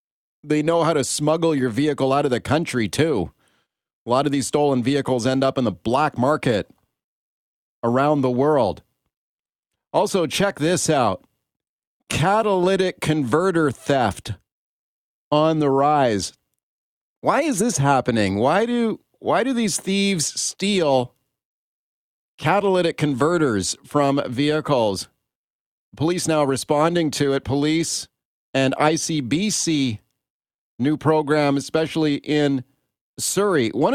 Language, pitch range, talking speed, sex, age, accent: English, 130-155 Hz, 115 wpm, male, 40-59, American